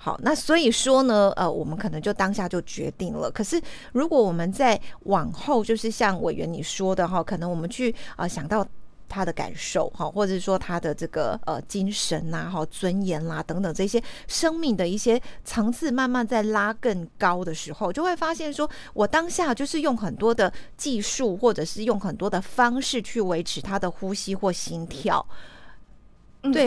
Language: Chinese